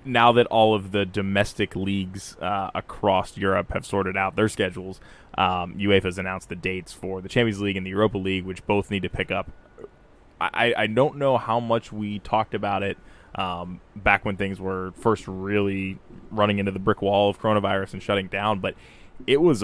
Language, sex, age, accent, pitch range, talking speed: English, male, 20-39, American, 95-105 Hz, 195 wpm